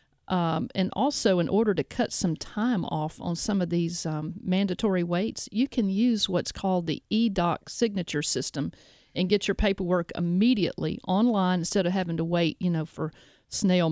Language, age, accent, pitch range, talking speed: English, 50-69, American, 170-210 Hz, 175 wpm